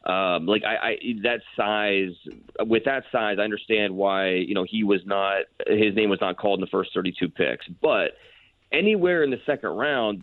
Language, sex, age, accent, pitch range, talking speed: English, male, 30-49, American, 100-115 Hz, 195 wpm